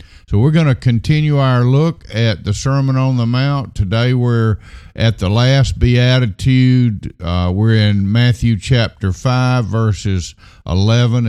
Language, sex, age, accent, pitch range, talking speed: English, male, 50-69, American, 100-135 Hz, 145 wpm